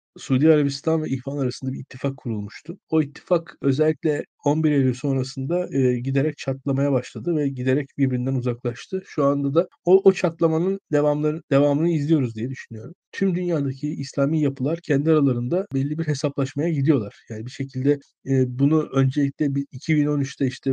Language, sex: Turkish, male